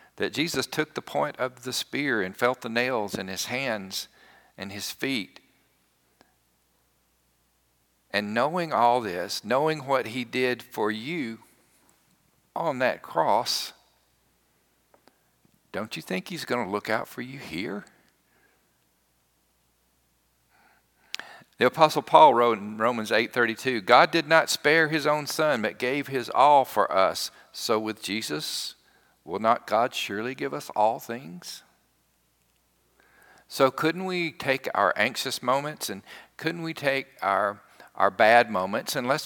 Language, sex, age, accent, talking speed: English, male, 50-69, American, 140 wpm